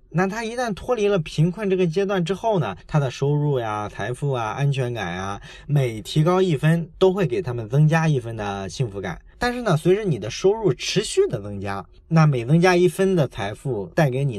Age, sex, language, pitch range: 20-39, male, Chinese, 120-170 Hz